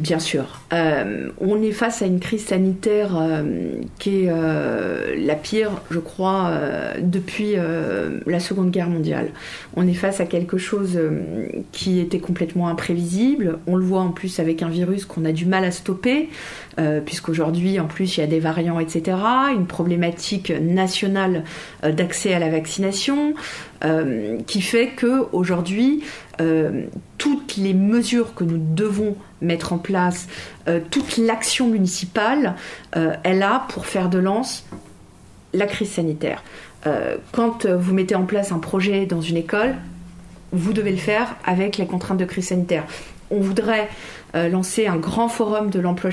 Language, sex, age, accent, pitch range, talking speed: French, female, 40-59, French, 170-210 Hz, 165 wpm